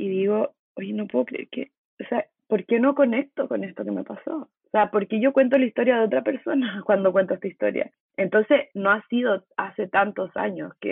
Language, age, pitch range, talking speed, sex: Spanish, 20-39, 195-250 Hz, 225 wpm, female